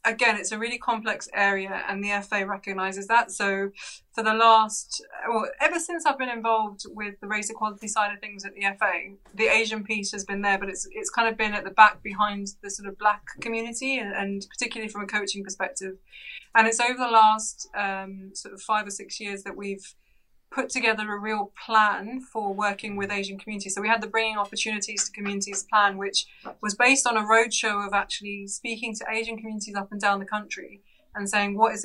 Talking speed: 215 wpm